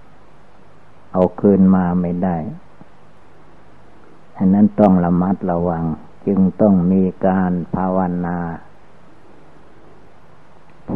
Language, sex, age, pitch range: Thai, male, 60-79, 90-100 Hz